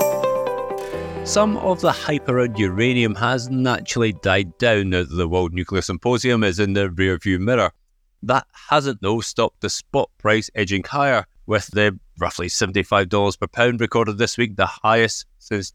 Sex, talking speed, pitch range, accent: male, 155 wpm, 100-120 Hz, British